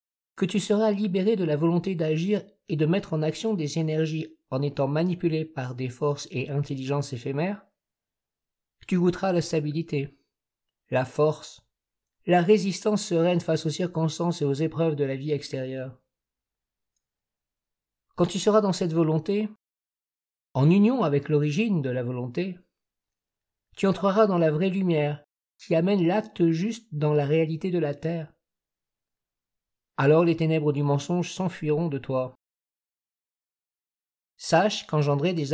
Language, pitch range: French, 145-180 Hz